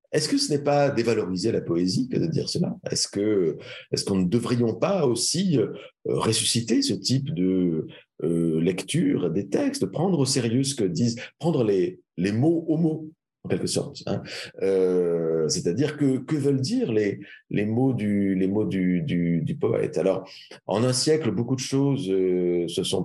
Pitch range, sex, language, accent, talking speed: 90-135 Hz, male, French, French, 185 wpm